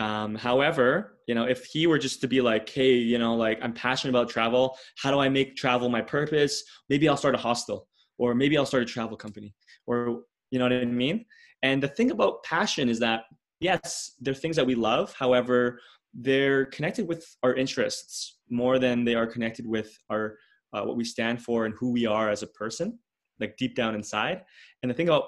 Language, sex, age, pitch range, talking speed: English, male, 20-39, 115-140 Hz, 215 wpm